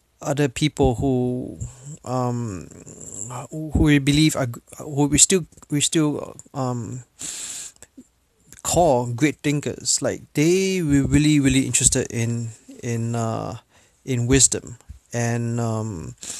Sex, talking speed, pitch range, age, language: male, 105 wpm, 125-155 Hz, 30-49, English